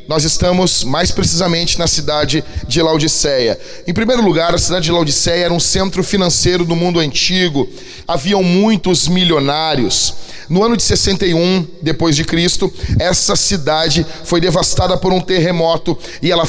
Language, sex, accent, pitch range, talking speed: Portuguese, male, Brazilian, 165-190 Hz, 145 wpm